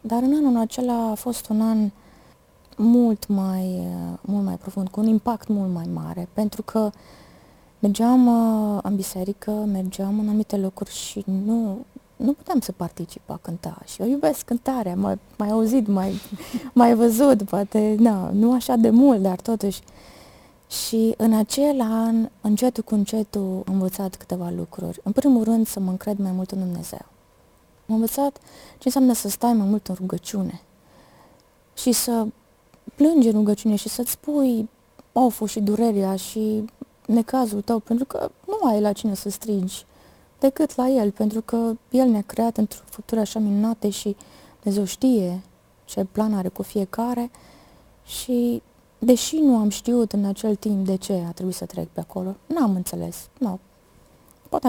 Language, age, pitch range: Romanian, 20-39, 195-240 Hz